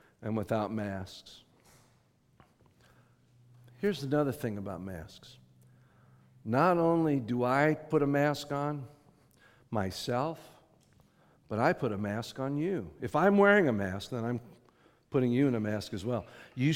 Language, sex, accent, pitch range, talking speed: English, male, American, 120-180 Hz, 140 wpm